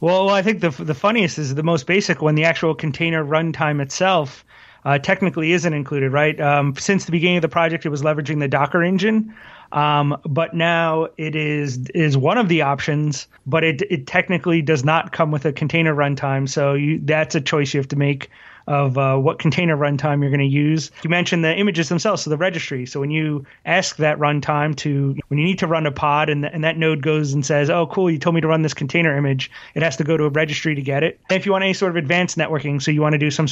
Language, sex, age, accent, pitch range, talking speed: English, male, 30-49, American, 145-165 Hz, 245 wpm